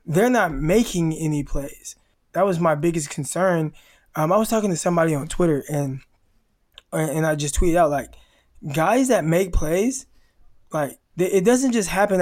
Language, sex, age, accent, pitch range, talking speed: English, male, 20-39, American, 160-190 Hz, 170 wpm